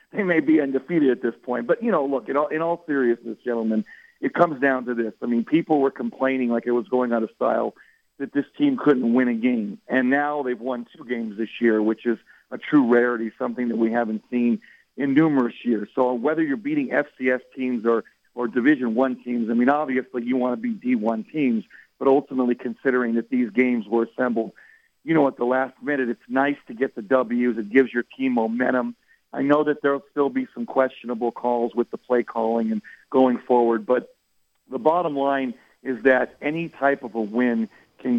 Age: 50-69